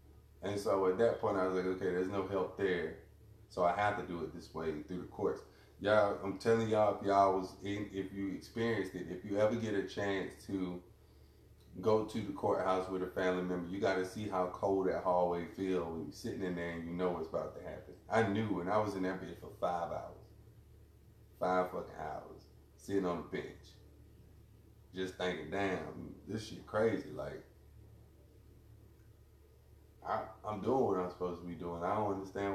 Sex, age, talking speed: male, 30-49, 195 wpm